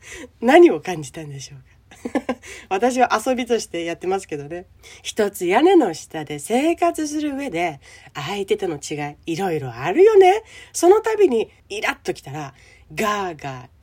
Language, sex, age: Japanese, female, 40-59